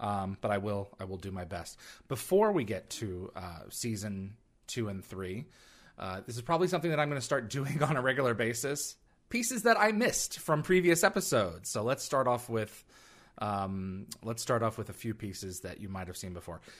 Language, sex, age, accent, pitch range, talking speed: English, male, 30-49, American, 100-135 Hz, 210 wpm